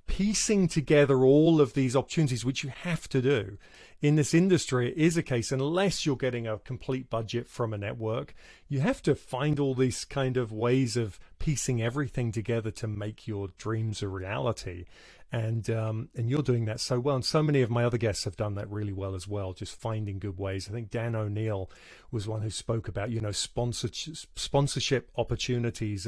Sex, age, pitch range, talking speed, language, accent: male, 30-49, 110-145 Hz, 195 wpm, English, British